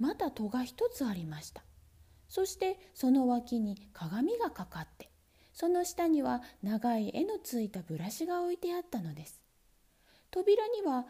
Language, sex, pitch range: Japanese, female, 200-320 Hz